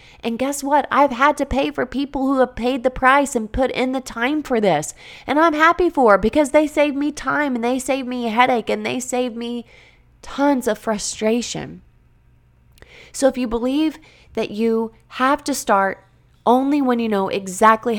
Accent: American